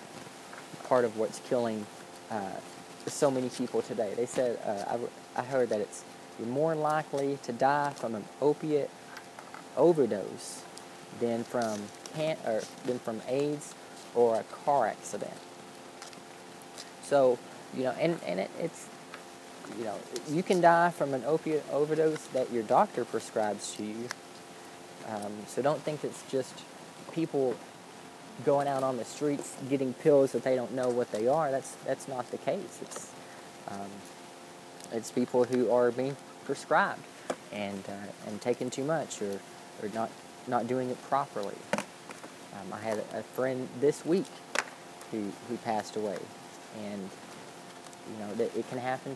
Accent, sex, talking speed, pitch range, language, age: American, male, 155 wpm, 90-125 Hz, English, 20-39